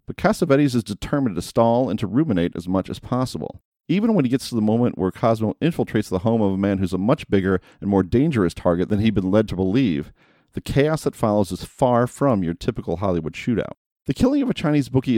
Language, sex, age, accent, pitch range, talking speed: English, male, 40-59, American, 95-120 Hz, 235 wpm